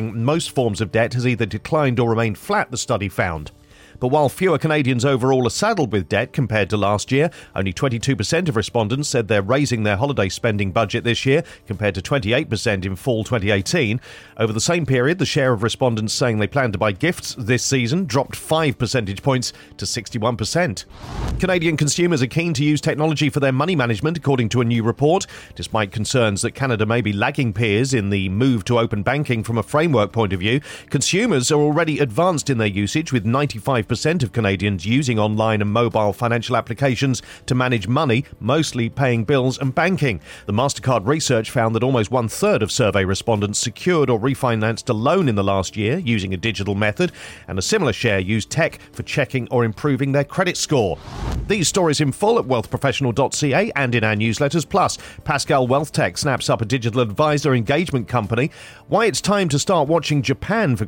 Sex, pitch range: male, 110-145 Hz